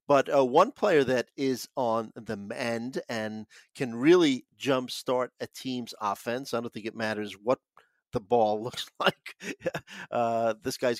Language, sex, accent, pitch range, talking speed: English, male, American, 115-140 Hz, 160 wpm